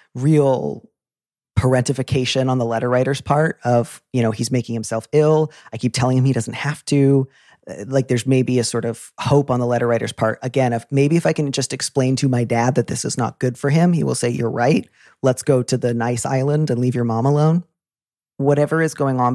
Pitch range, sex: 115-135 Hz, male